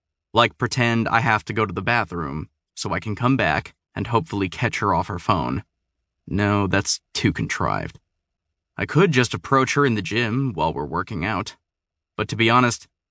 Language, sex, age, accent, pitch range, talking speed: English, male, 20-39, American, 90-120 Hz, 190 wpm